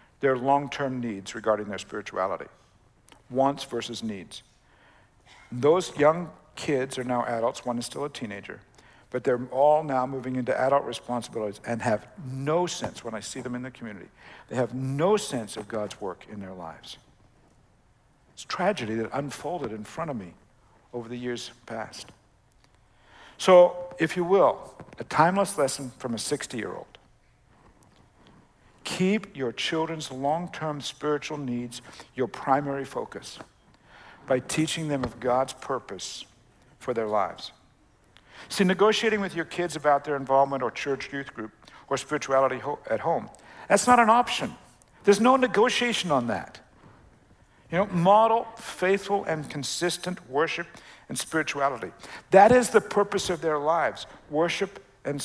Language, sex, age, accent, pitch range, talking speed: English, male, 60-79, American, 125-170 Hz, 145 wpm